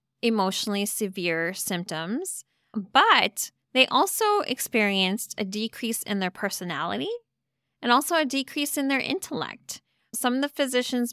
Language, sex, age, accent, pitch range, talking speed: English, female, 20-39, American, 195-250 Hz, 125 wpm